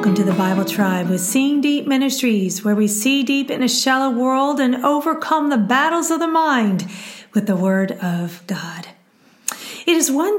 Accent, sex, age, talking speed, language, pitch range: American, female, 40-59, 185 wpm, English, 210-275 Hz